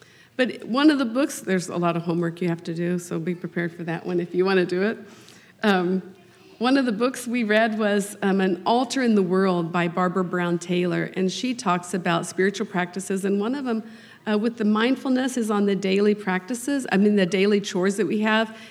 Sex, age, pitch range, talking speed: female, 50-69, 180-235 Hz, 230 wpm